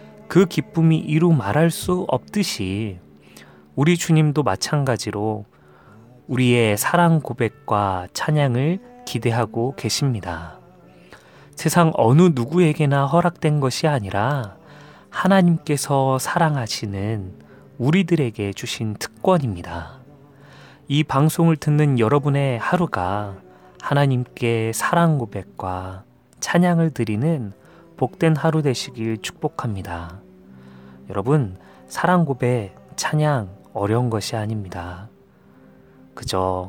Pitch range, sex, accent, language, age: 100-145 Hz, male, native, Korean, 30-49